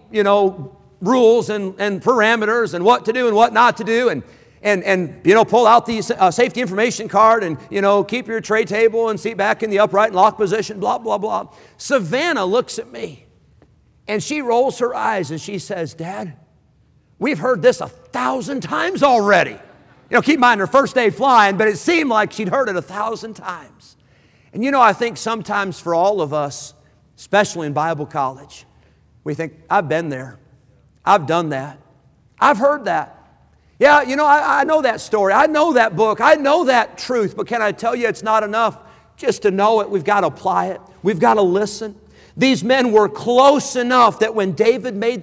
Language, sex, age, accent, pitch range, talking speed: English, male, 50-69, American, 175-235 Hz, 205 wpm